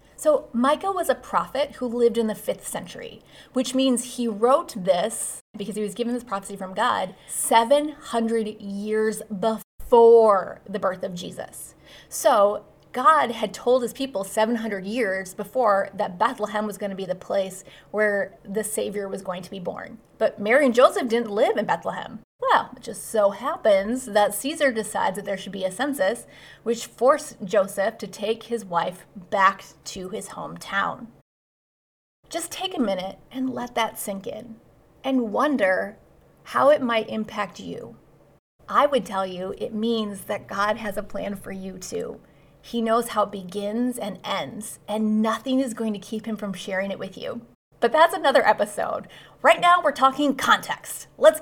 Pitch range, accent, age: 200-260 Hz, American, 30-49